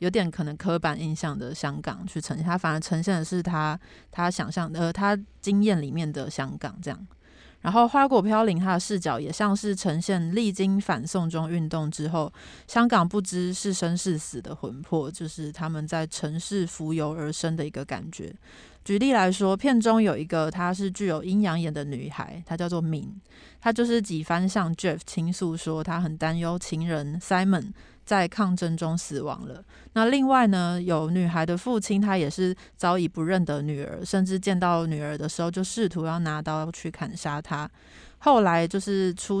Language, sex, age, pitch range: Chinese, female, 30-49, 160-195 Hz